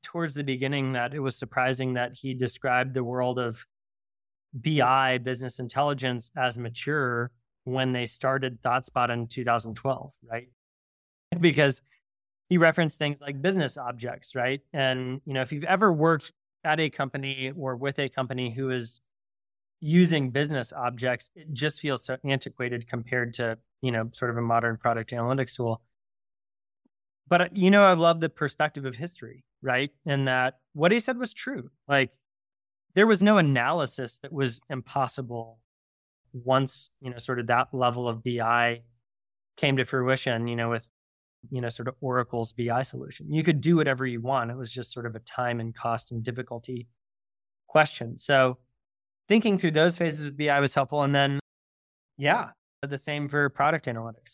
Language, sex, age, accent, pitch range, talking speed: English, male, 20-39, American, 120-140 Hz, 165 wpm